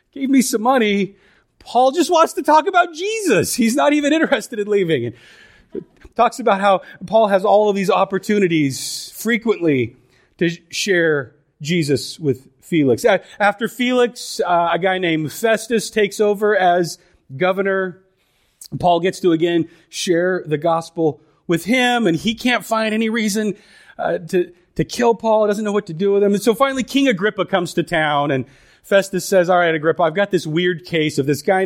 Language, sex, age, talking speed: English, male, 30-49, 180 wpm